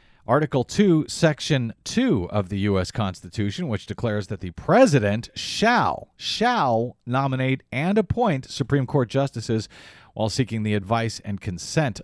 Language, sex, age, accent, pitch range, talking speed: English, male, 40-59, American, 105-140 Hz, 135 wpm